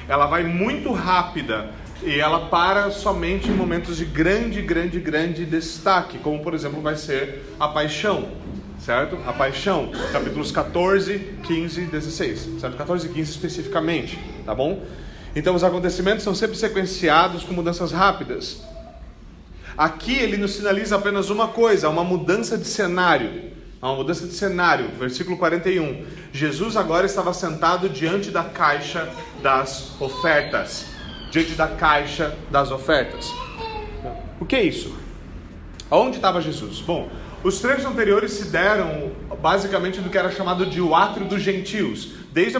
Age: 40-59